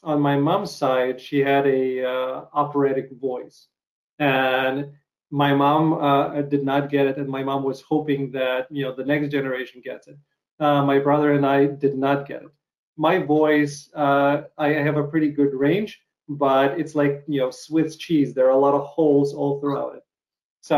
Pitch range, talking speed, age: 140-160 Hz, 190 wpm, 30-49